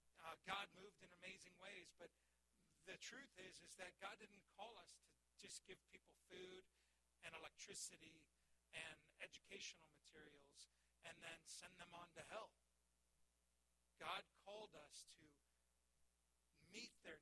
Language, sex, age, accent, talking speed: English, male, 50-69, American, 135 wpm